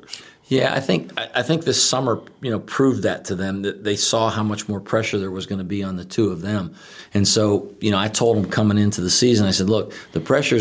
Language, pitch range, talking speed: English, 95-105 Hz, 260 wpm